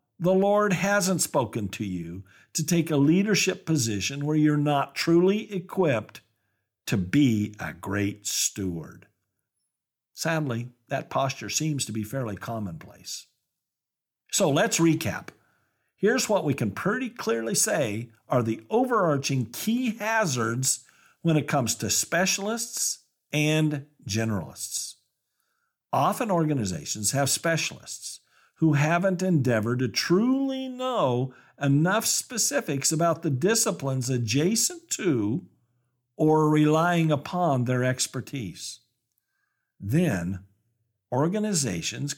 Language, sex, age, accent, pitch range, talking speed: English, male, 50-69, American, 115-180 Hz, 105 wpm